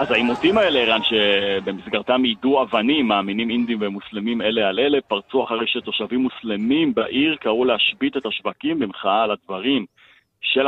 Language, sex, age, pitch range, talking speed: Hebrew, male, 40-59, 100-125 Hz, 145 wpm